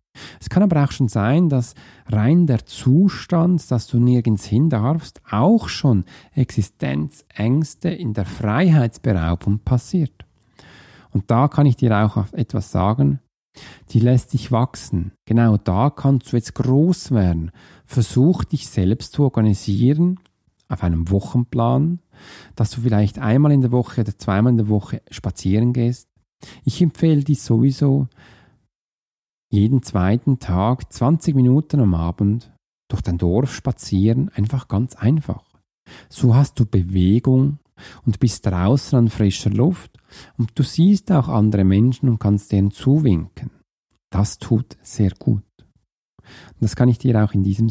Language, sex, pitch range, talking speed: German, male, 100-135 Hz, 140 wpm